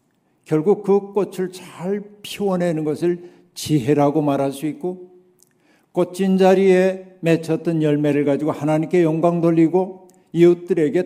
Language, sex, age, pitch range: Korean, male, 50-69, 145-180 Hz